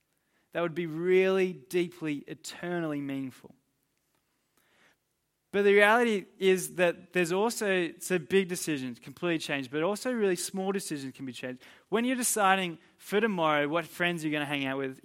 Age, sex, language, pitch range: 20-39, male, English, 155-190 Hz